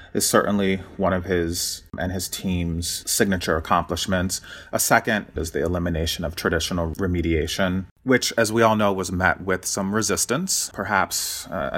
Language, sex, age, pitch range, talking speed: English, male, 30-49, 90-105 Hz, 155 wpm